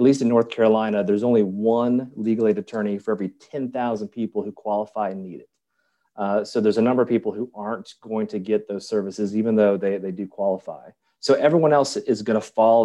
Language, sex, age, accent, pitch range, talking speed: English, male, 30-49, American, 100-115 Hz, 220 wpm